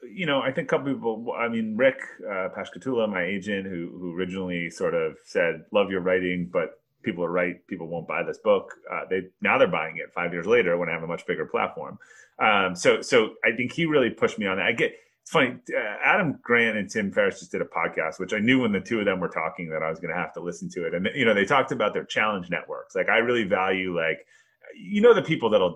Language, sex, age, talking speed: English, male, 30-49, 260 wpm